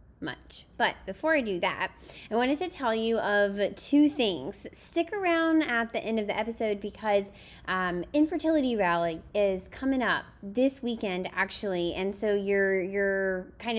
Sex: female